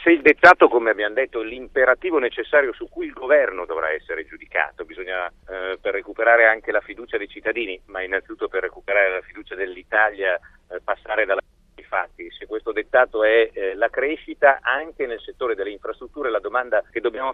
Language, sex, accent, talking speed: Italian, male, native, 180 wpm